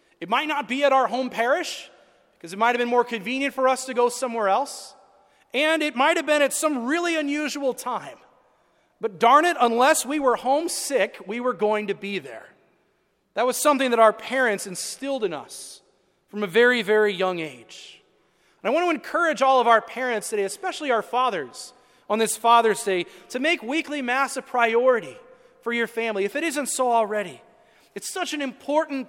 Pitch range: 205-270 Hz